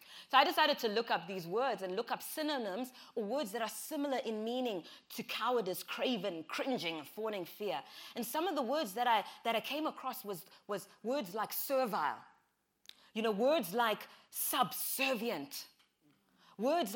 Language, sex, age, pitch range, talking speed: English, female, 20-39, 220-300 Hz, 165 wpm